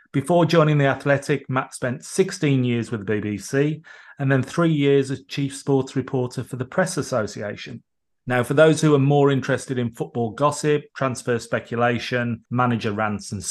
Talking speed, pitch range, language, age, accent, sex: 170 wpm, 115-140 Hz, English, 30-49, British, male